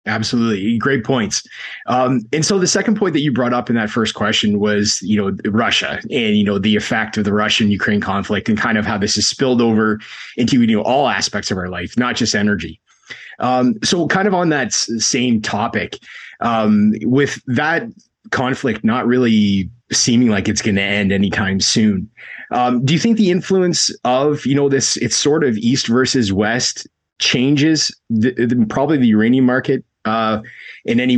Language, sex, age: English, male, 20-39